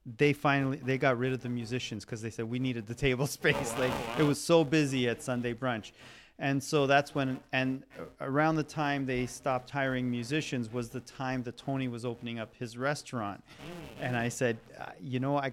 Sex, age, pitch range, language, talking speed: male, 30-49, 125-150 Hz, English, 200 wpm